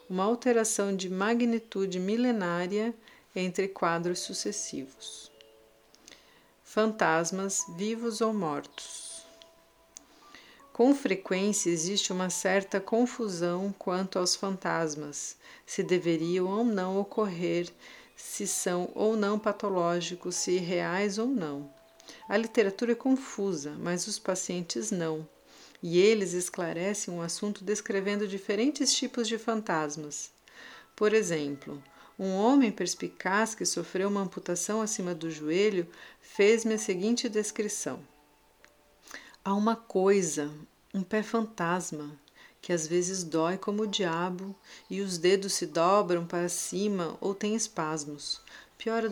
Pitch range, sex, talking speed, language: 175-215 Hz, female, 115 wpm, Portuguese